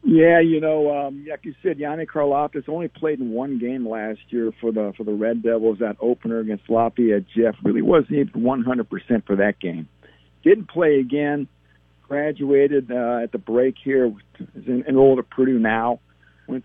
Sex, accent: male, American